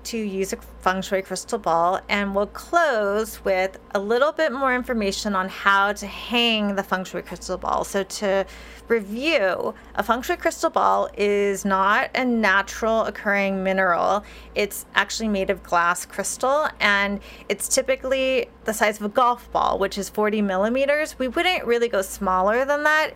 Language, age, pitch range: English, 30-49, 195-245 Hz